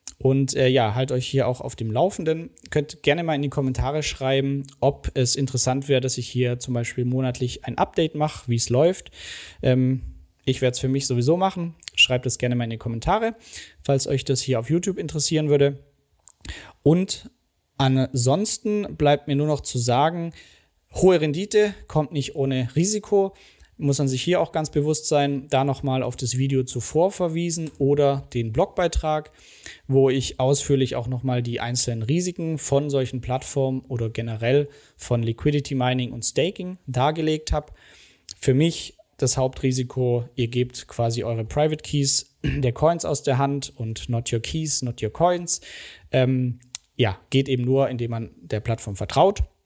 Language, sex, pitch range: German, male, 125-150 Hz